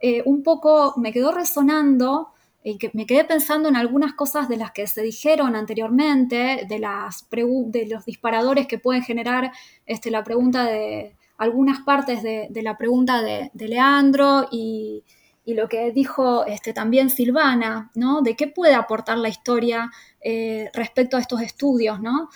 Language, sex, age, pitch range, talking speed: Spanish, female, 20-39, 230-290 Hz, 160 wpm